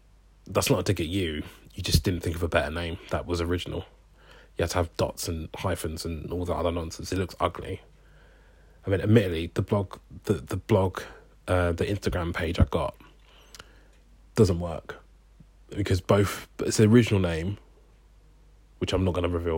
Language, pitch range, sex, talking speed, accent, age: English, 85-105 Hz, male, 185 wpm, British, 20-39